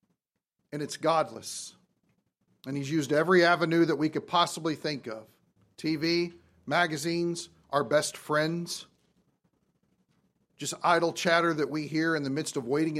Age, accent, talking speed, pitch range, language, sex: 40-59, American, 140 wpm, 135-170 Hz, English, male